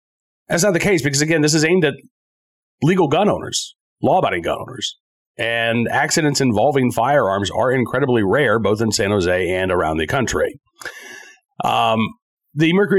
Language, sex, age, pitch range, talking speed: English, male, 40-59, 115-165 Hz, 155 wpm